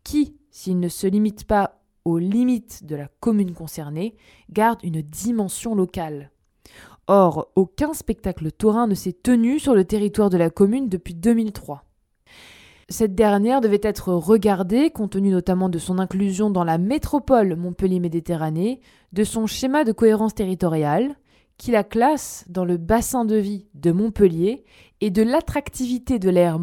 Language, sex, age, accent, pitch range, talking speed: French, female, 20-39, French, 175-235 Hz, 150 wpm